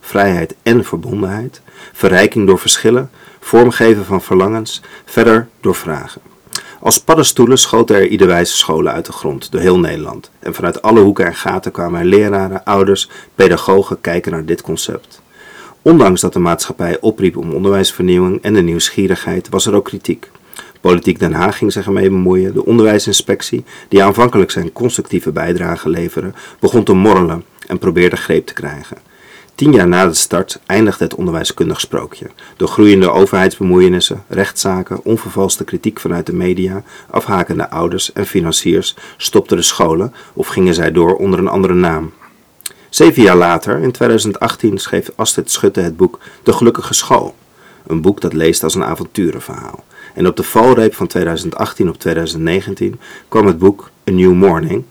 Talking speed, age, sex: 155 wpm, 40-59, male